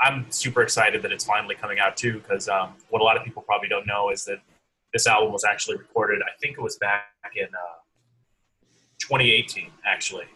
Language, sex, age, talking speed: English, male, 30-49, 195 wpm